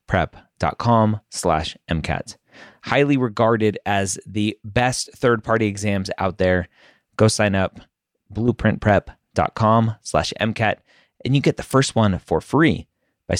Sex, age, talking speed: male, 30-49, 120 wpm